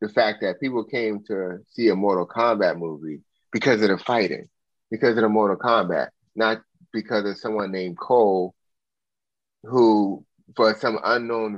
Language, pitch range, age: English, 90-110 Hz, 30-49